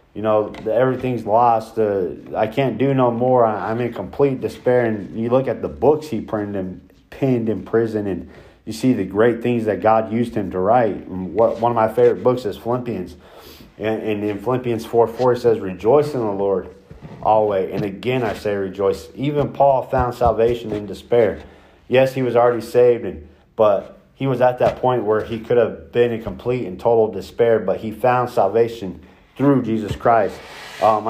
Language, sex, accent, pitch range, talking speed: English, male, American, 105-125 Hz, 195 wpm